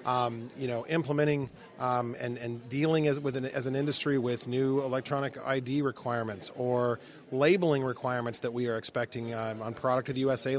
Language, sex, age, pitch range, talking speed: English, male, 30-49, 120-145 Hz, 180 wpm